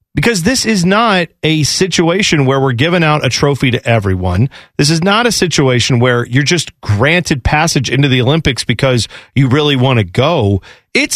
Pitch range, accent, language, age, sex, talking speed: 130-185 Hz, American, English, 40-59, male, 185 wpm